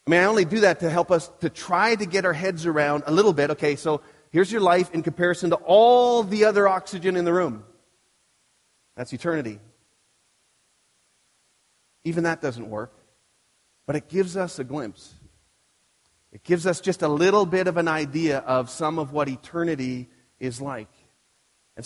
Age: 30-49